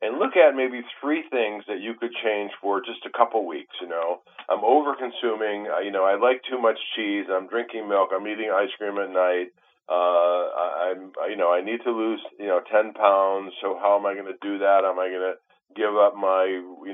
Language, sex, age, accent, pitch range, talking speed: English, male, 40-59, American, 95-120 Hz, 225 wpm